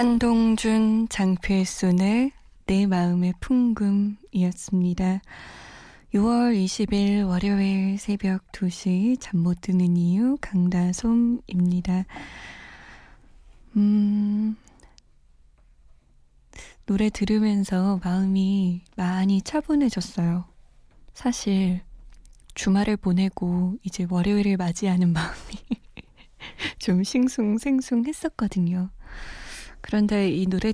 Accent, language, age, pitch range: native, Korean, 20-39, 185-225 Hz